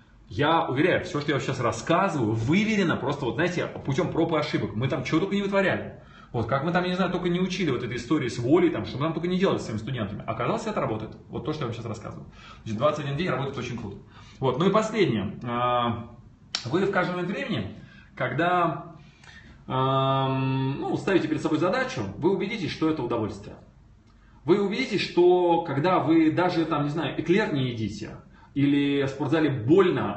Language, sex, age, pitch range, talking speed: Russian, male, 20-39, 115-165 Hz, 195 wpm